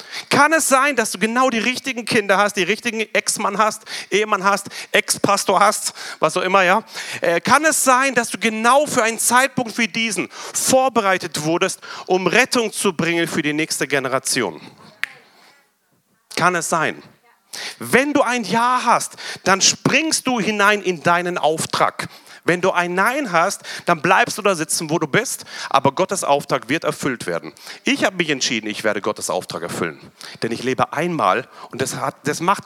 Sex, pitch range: male, 165-230 Hz